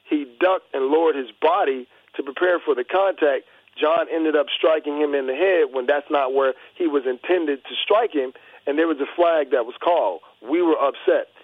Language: English